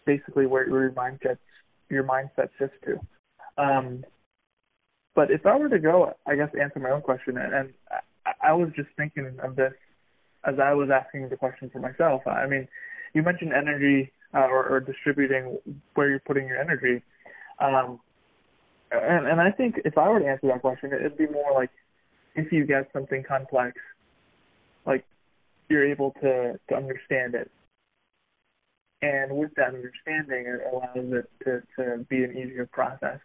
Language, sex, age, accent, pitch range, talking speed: English, male, 20-39, American, 130-145 Hz, 170 wpm